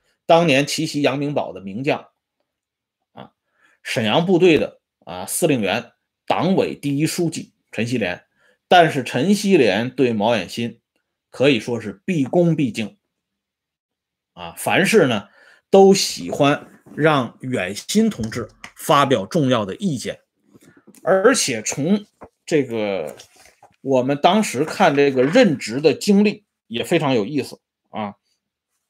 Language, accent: Swedish, Chinese